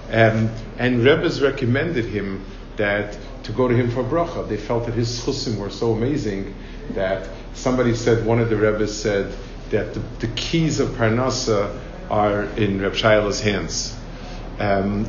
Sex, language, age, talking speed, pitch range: male, English, 50-69, 160 wpm, 110-130 Hz